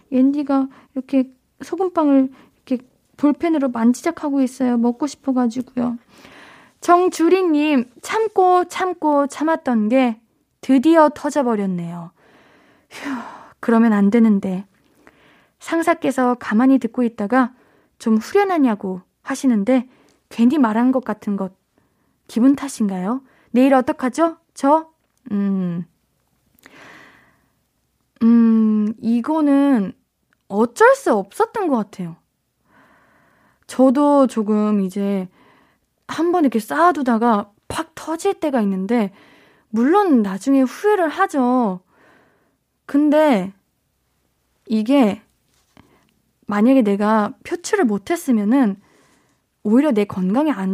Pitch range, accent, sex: 220-305 Hz, native, female